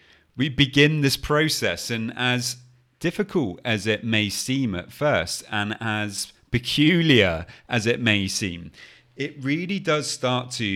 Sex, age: male, 30-49